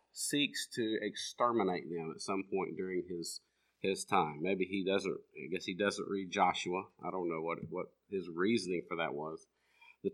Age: 50-69